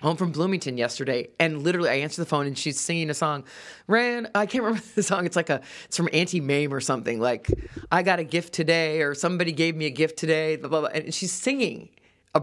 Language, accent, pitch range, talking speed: English, American, 135-175 Hz, 225 wpm